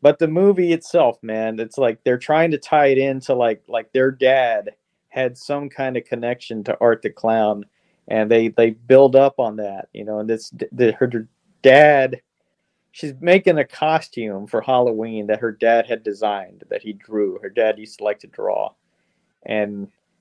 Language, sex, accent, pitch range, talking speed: English, male, American, 110-135 Hz, 185 wpm